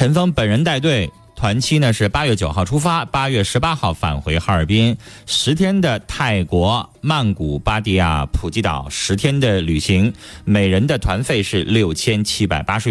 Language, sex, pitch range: Chinese, male, 90-125 Hz